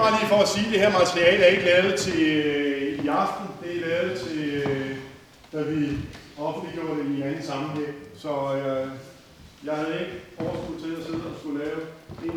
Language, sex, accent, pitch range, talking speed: Danish, male, native, 150-180 Hz, 195 wpm